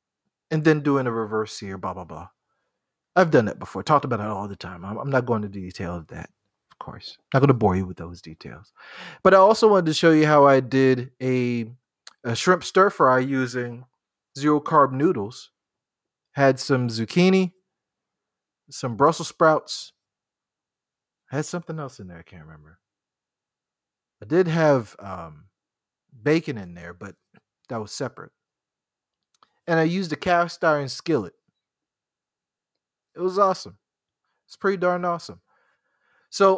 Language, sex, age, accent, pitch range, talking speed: English, male, 30-49, American, 105-155 Hz, 160 wpm